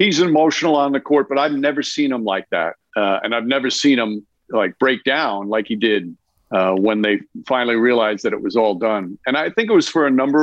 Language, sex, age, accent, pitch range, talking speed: English, male, 50-69, American, 115-180 Hz, 240 wpm